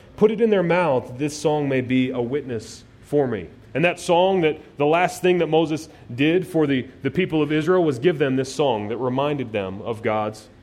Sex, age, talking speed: male, 30-49, 220 wpm